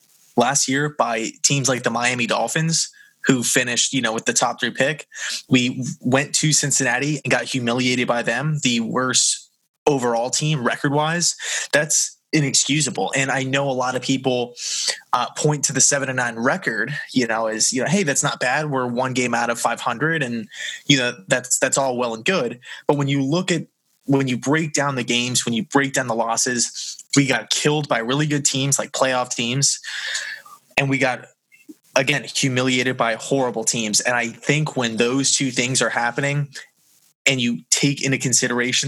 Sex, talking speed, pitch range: male, 190 wpm, 120-145 Hz